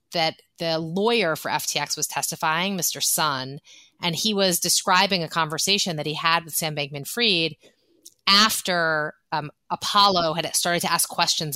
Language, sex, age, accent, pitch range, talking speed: English, female, 30-49, American, 160-205 Hz, 150 wpm